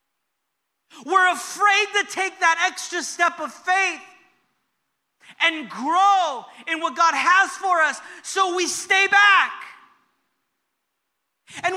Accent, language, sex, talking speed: American, English, male, 110 wpm